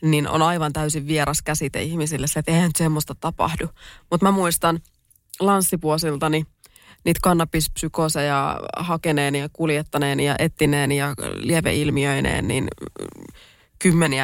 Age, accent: 20-39, native